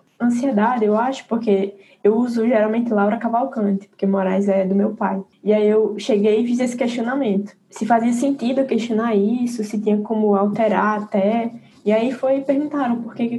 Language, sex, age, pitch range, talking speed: Portuguese, female, 10-29, 205-235 Hz, 180 wpm